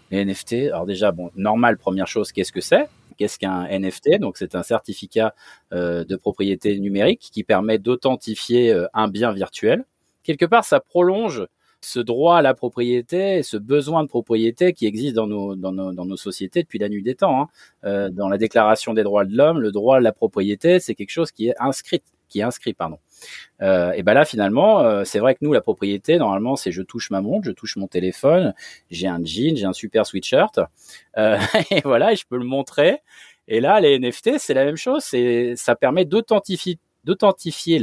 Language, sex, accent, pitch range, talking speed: French, male, French, 95-140 Hz, 205 wpm